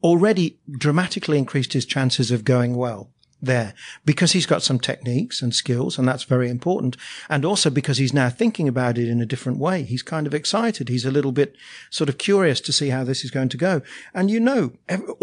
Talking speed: 215 wpm